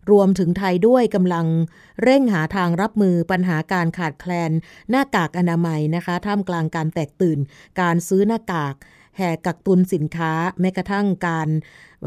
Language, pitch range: Thai, 170-210 Hz